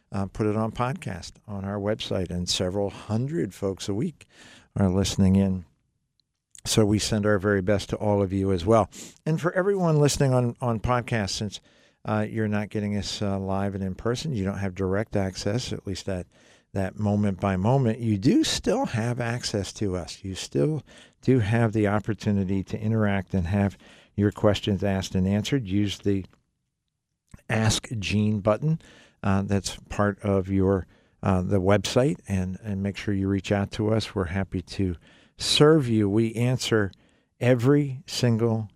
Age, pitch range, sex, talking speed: 50-69, 100-115 Hz, male, 175 wpm